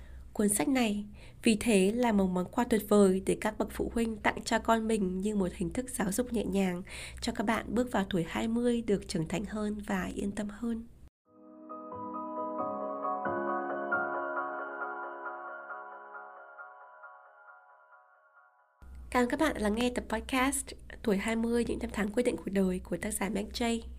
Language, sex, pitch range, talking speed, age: Vietnamese, female, 190-240 Hz, 165 wpm, 20-39